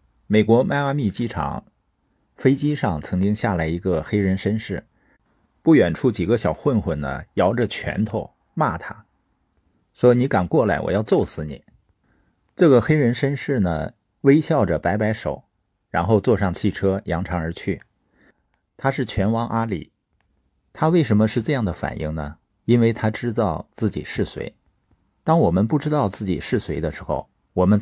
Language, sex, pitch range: Chinese, male, 90-120 Hz